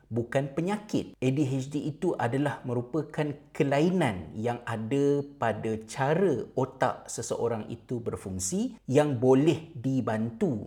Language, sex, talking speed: Malay, male, 100 wpm